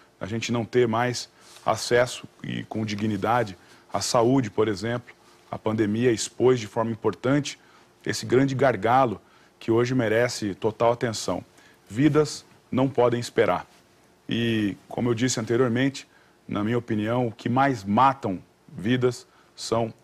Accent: Brazilian